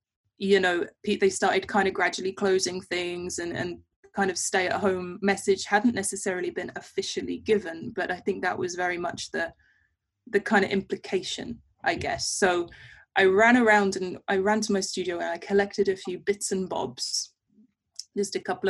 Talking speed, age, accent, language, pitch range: 185 wpm, 20-39, British, English, 185-210 Hz